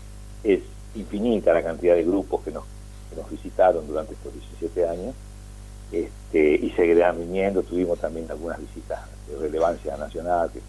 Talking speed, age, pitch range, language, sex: 150 wpm, 60-79, 100-160 Hz, Spanish, male